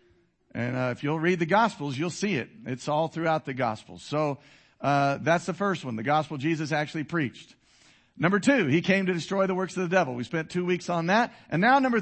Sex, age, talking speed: male, 50-69, 230 wpm